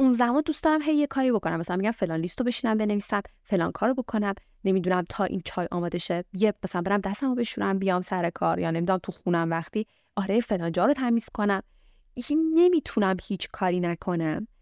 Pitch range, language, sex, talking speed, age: 180-230 Hz, Persian, female, 195 wpm, 20-39